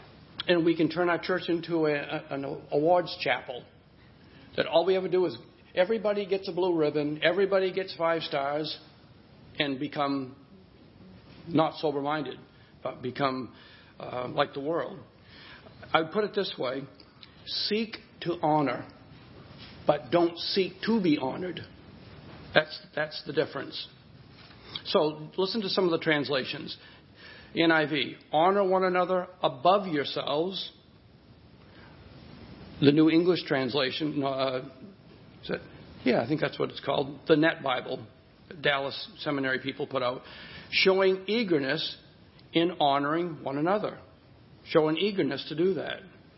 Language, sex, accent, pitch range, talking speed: English, male, American, 145-180 Hz, 130 wpm